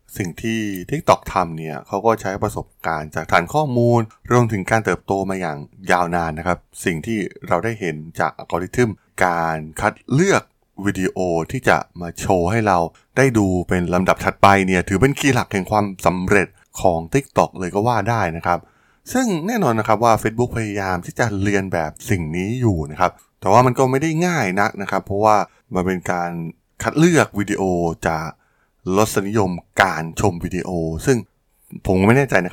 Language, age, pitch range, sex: Thai, 20-39, 90-115 Hz, male